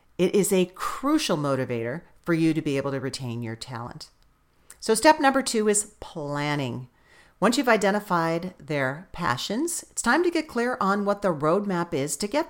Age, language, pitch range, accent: 40-59, English, 145-205 Hz, American